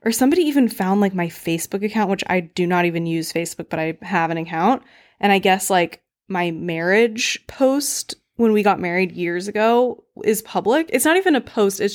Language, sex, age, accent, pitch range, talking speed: English, female, 20-39, American, 180-220 Hz, 205 wpm